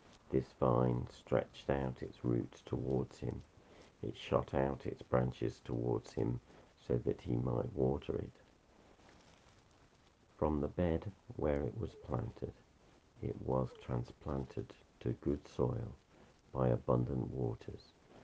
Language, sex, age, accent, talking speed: English, male, 50-69, British, 120 wpm